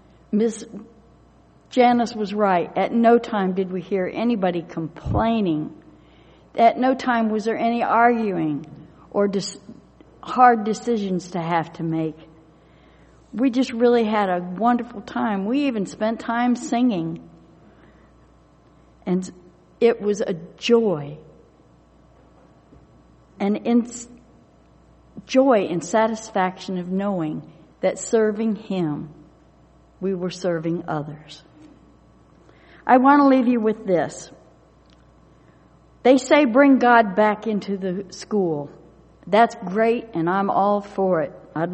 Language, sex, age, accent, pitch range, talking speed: English, female, 60-79, American, 170-235 Hz, 115 wpm